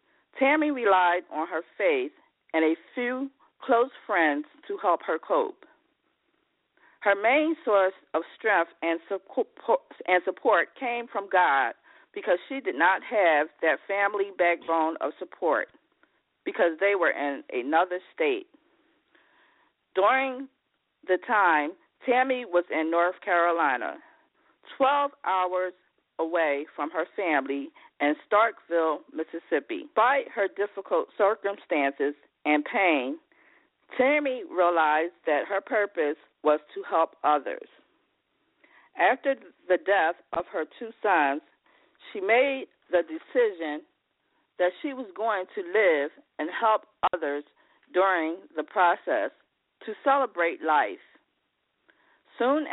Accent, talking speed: American, 115 wpm